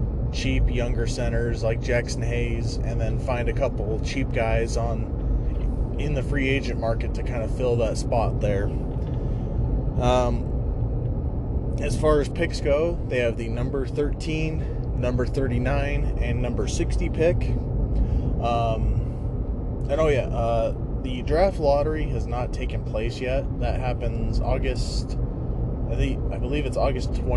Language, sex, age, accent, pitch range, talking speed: English, male, 20-39, American, 115-125 Hz, 140 wpm